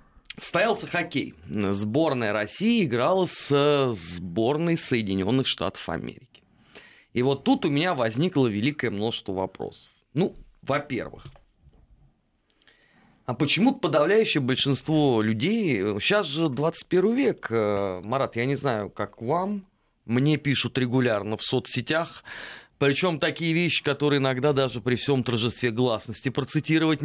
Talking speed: 120 wpm